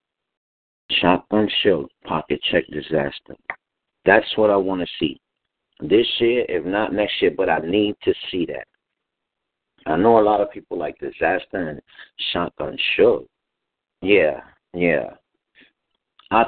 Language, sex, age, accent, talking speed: English, male, 50-69, American, 135 wpm